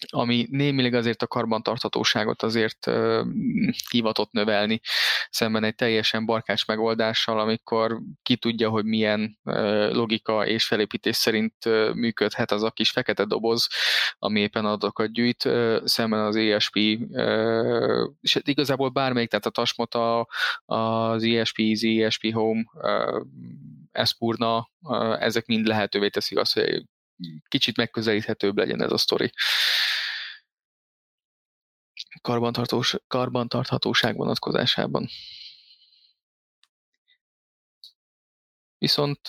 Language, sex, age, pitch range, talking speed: Hungarian, male, 20-39, 110-120 Hz, 100 wpm